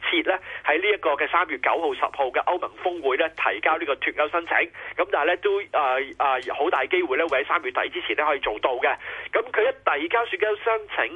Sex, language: male, Chinese